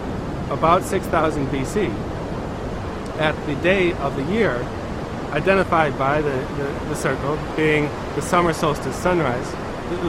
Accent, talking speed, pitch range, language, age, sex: American, 125 wpm, 110-170 Hz, English, 30-49, male